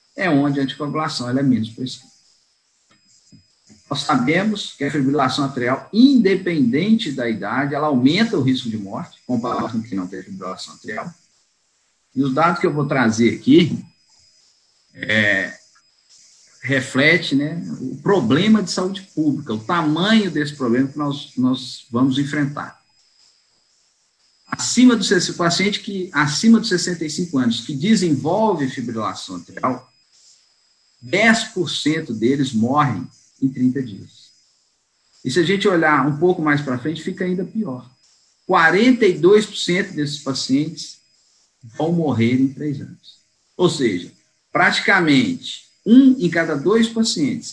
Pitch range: 130-195 Hz